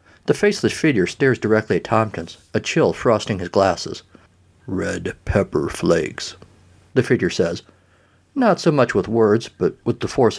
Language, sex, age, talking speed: English, male, 50-69, 155 wpm